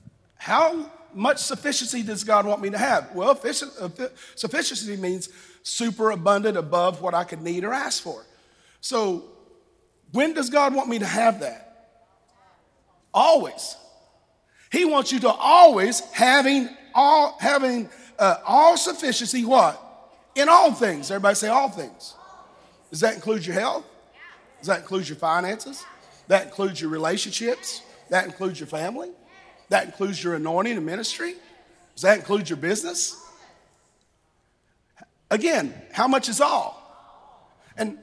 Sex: male